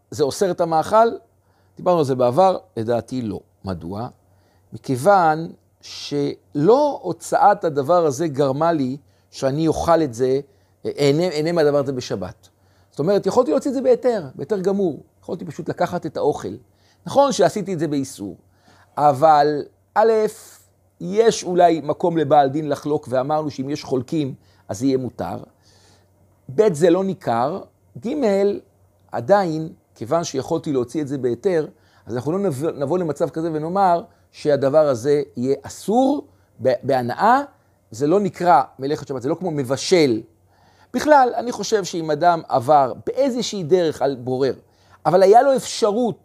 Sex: male